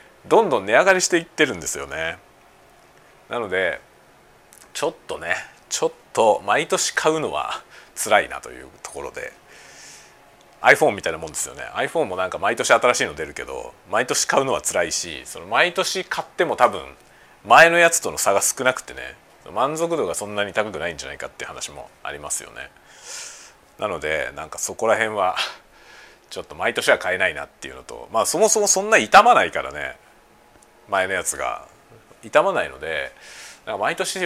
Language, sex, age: Japanese, male, 40-59